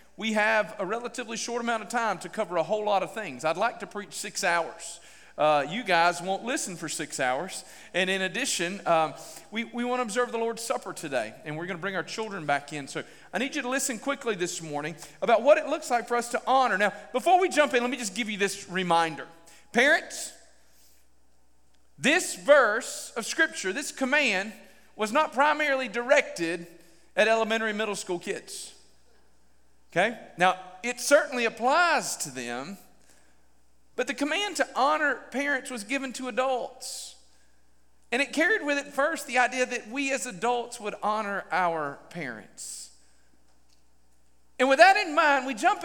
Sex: male